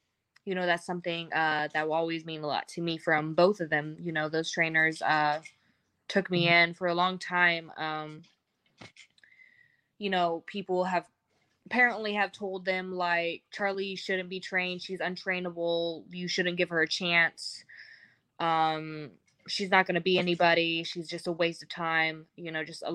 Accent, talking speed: American, 180 wpm